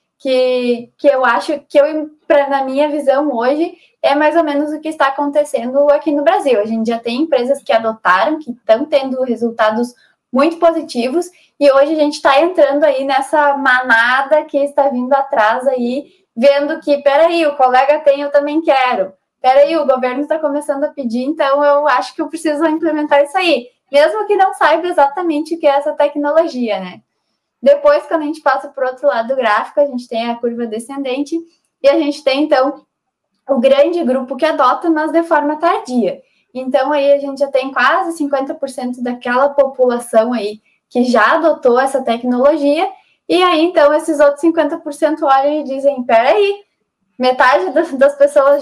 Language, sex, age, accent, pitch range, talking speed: Portuguese, female, 10-29, Brazilian, 255-305 Hz, 180 wpm